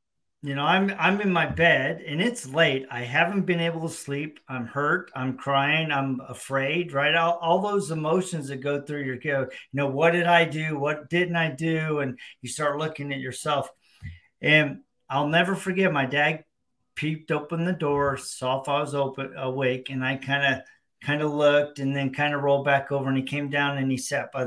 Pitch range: 130-160 Hz